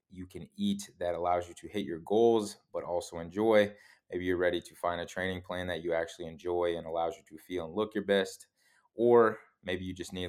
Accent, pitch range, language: American, 85-105 Hz, English